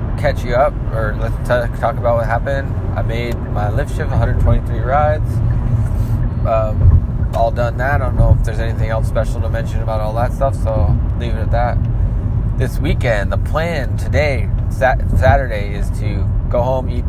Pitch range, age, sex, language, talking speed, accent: 100-115 Hz, 20-39, male, English, 175 wpm, American